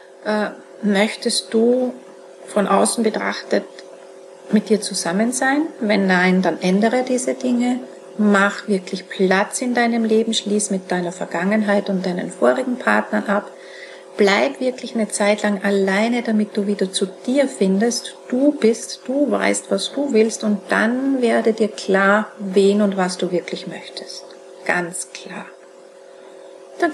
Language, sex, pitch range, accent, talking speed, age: German, female, 180-230 Hz, Austrian, 140 wpm, 40-59